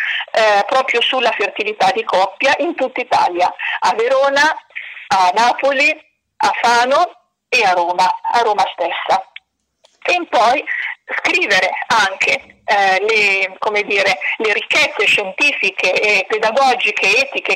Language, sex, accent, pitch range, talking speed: Italian, female, native, 215-305 Hz, 110 wpm